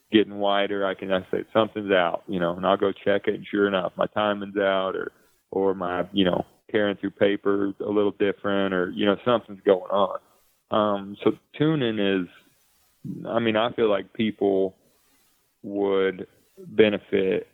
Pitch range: 95-110 Hz